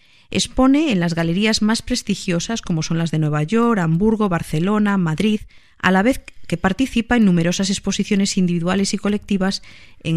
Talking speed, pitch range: 160 wpm, 170-225 Hz